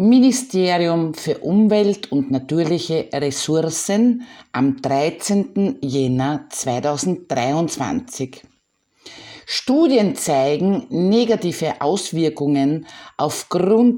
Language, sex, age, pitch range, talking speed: German, female, 50-69, 140-200 Hz, 65 wpm